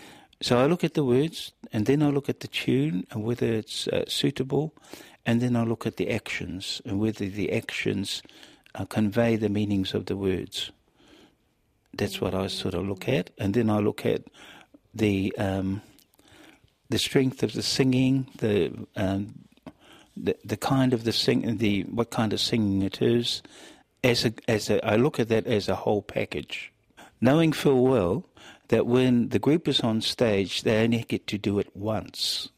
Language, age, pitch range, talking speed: English, 50-69, 100-120 Hz, 180 wpm